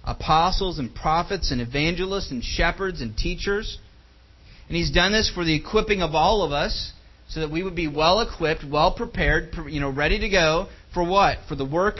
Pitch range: 125-195 Hz